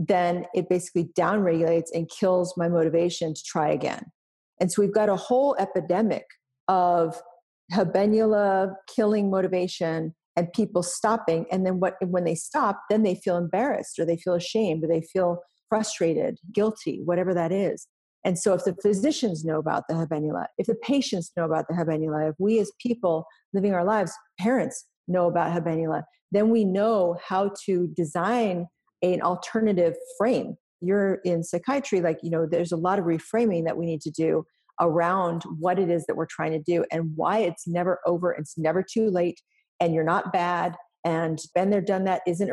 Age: 40-59